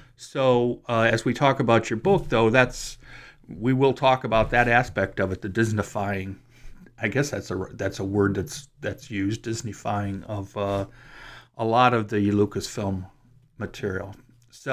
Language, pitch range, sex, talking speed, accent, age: English, 105-130 Hz, male, 160 wpm, American, 50-69